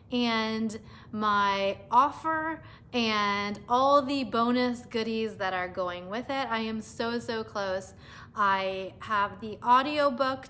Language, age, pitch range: English, 20-39, 195-245 Hz